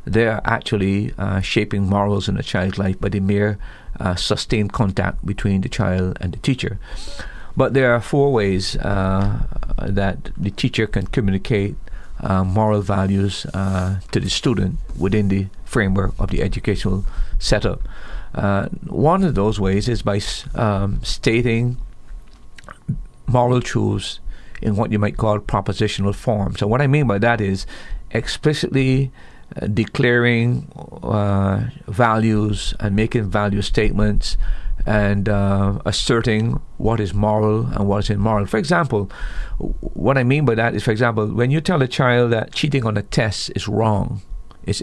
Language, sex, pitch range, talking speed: English, male, 100-120 Hz, 150 wpm